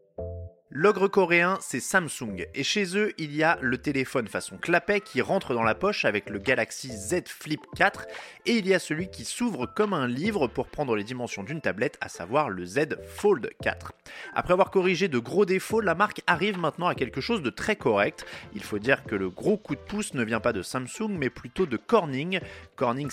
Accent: French